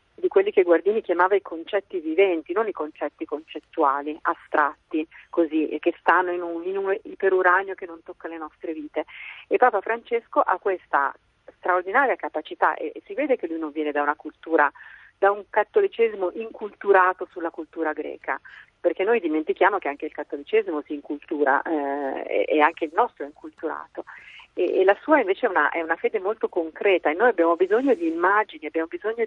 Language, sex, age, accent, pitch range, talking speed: Italian, female, 40-59, native, 160-230 Hz, 180 wpm